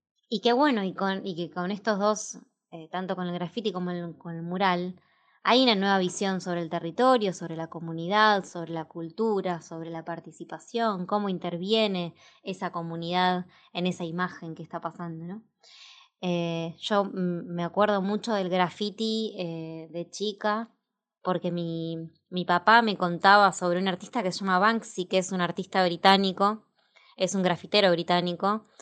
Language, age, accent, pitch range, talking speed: Spanish, 20-39, Argentinian, 175-210 Hz, 160 wpm